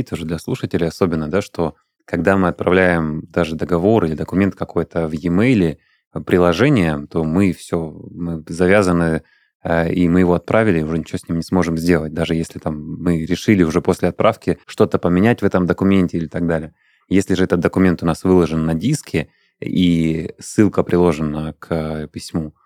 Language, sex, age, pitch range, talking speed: Russian, male, 20-39, 80-95 Hz, 165 wpm